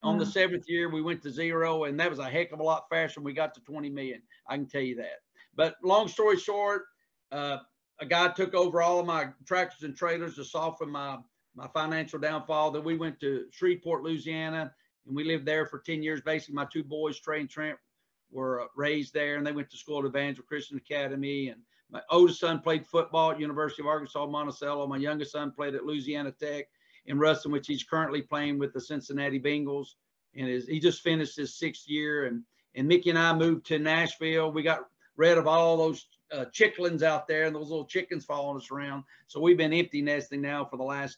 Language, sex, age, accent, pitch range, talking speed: English, male, 50-69, American, 145-170 Hz, 215 wpm